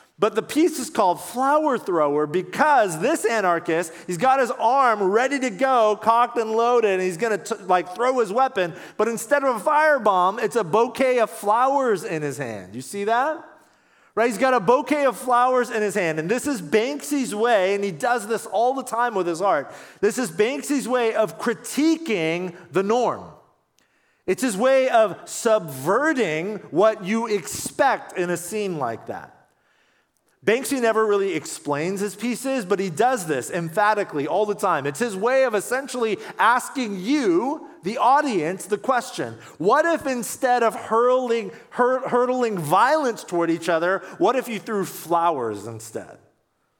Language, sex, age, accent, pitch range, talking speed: English, male, 40-59, American, 180-255 Hz, 170 wpm